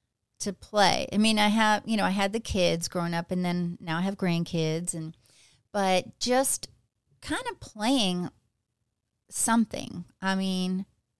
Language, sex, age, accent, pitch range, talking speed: English, female, 40-59, American, 180-235 Hz, 155 wpm